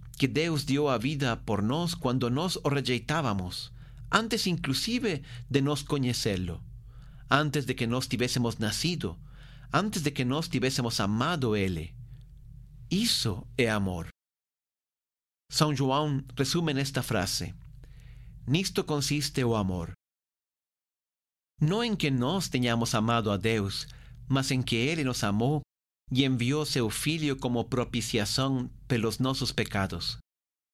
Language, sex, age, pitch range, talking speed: Portuguese, male, 40-59, 115-145 Hz, 125 wpm